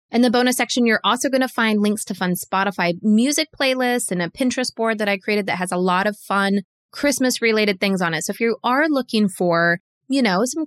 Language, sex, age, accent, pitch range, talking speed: English, female, 20-39, American, 190-245 Hz, 225 wpm